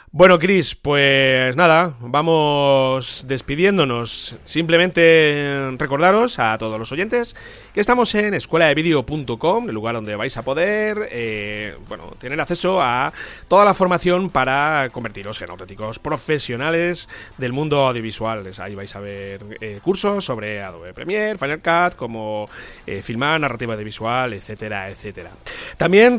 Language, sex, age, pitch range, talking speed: Spanish, male, 30-49, 110-170 Hz, 135 wpm